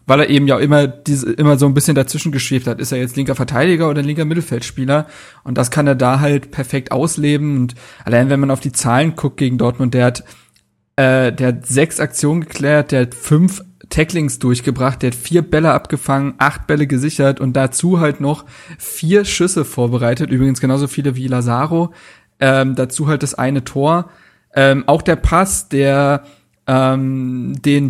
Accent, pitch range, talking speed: German, 130-155 Hz, 185 wpm